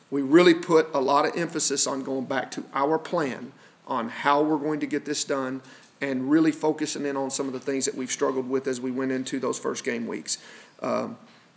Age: 40-59